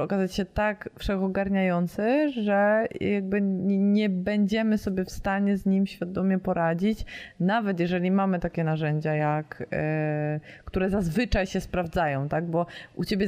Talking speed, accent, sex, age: 130 wpm, native, female, 20-39